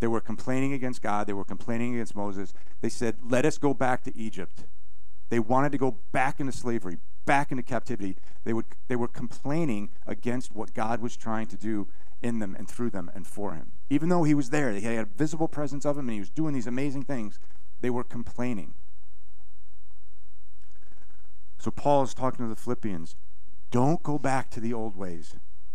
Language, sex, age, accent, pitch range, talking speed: English, male, 40-59, American, 95-130 Hz, 195 wpm